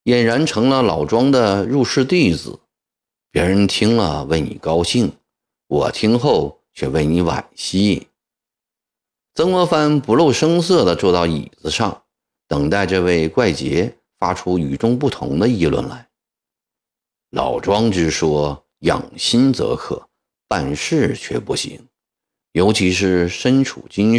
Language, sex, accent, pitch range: Chinese, male, native, 80-125 Hz